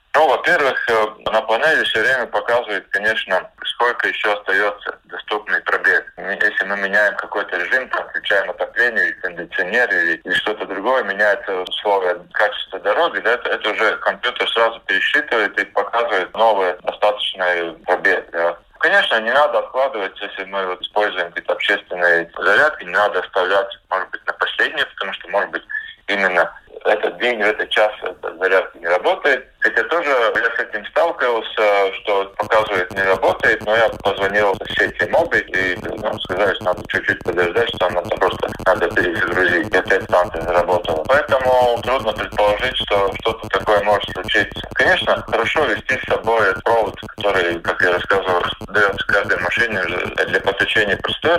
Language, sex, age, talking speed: Russian, male, 20-39, 155 wpm